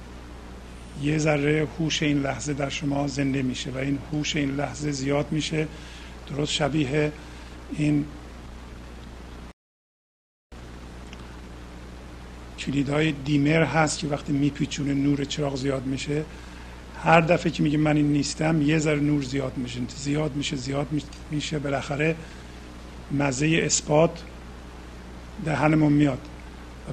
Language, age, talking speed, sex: Persian, 50-69, 115 wpm, male